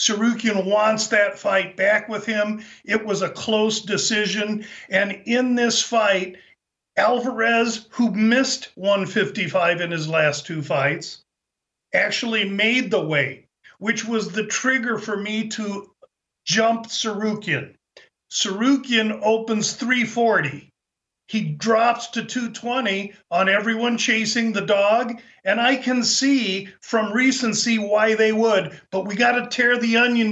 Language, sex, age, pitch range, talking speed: English, male, 50-69, 205-240 Hz, 130 wpm